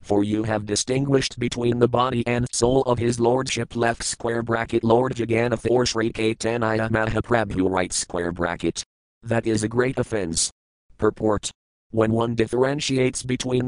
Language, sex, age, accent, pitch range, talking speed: English, male, 40-59, American, 105-120 Hz, 145 wpm